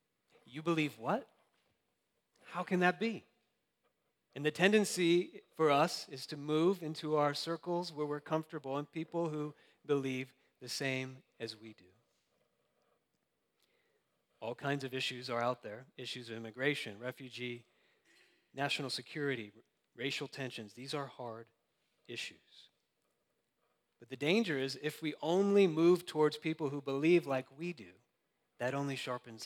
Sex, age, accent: male, 40-59, American